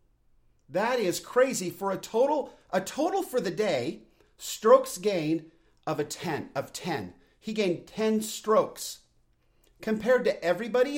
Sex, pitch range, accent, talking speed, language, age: male, 160-225 Hz, American, 135 wpm, English, 50-69